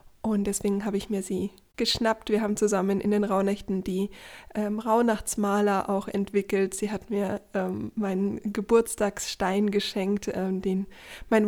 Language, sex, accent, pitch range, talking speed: German, female, German, 195-220 Hz, 145 wpm